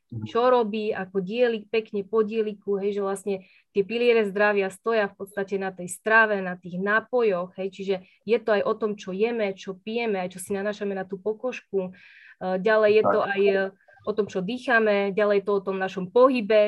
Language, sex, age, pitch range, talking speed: Slovak, female, 20-39, 195-230 Hz, 195 wpm